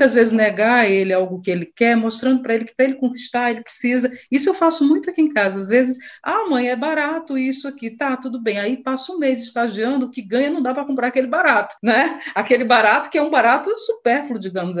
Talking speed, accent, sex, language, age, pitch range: 235 wpm, Brazilian, female, Portuguese, 40-59, 195-265 Hz